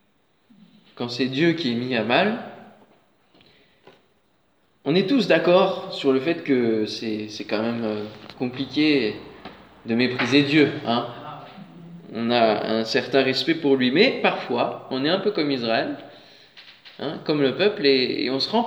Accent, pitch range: French, 130-200 Hz